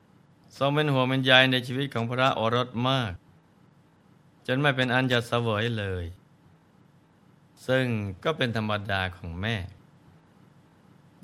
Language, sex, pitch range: Thai, male, 110-130 Hz